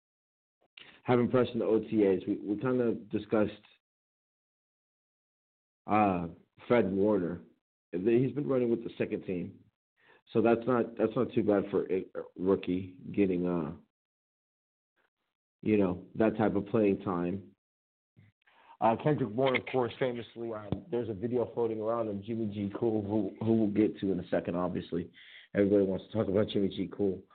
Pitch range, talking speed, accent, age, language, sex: 95-115 Hz, 155 wpm, American, 50-69, English, male